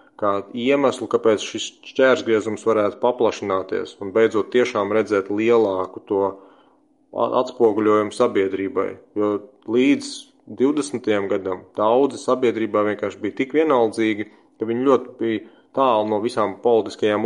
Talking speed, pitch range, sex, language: 115 wpm, 105-120 Hz, male, English